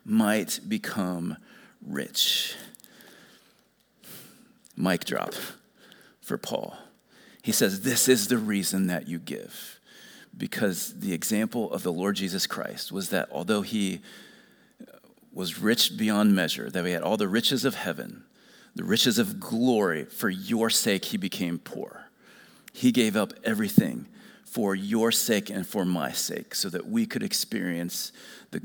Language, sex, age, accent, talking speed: English, male, 40-59, American, 140 wpm